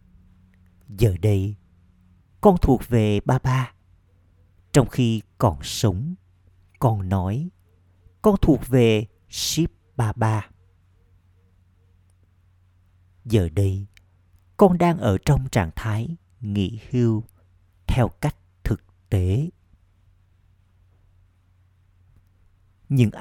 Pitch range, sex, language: 90-120 Hz, male, Vietnamese